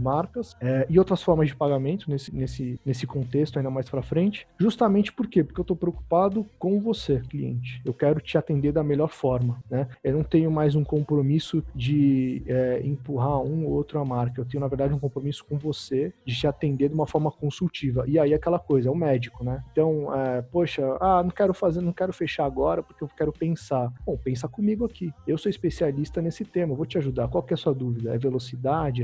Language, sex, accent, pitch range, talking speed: Portuguese, male, Brazilian, 135-165 Hz, 220 wpm